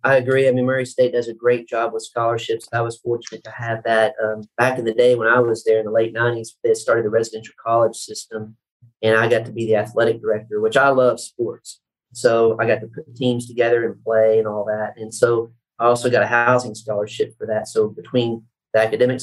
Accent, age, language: American, 40-59, English